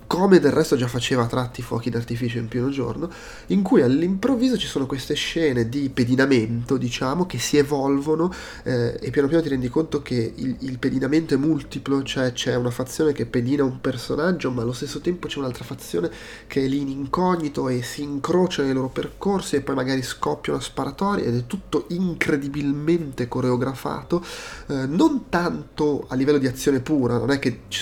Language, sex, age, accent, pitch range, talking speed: Italian, male, 30-49, native, 120-145 Hz, 185 wpm